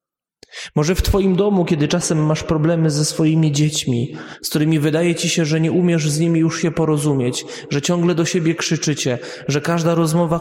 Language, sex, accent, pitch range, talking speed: Polish, male, native, 145-175 Hz, 185 wpm